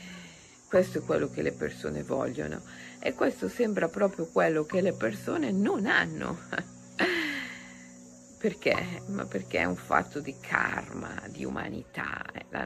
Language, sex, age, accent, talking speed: Italian, female, 50-69, native, 135 wpm